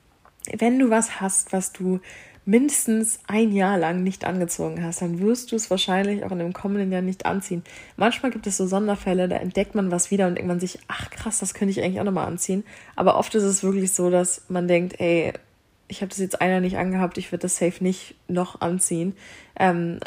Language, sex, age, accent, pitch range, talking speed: German, female, 20-39, German, 175-200 Hz, 215 wpm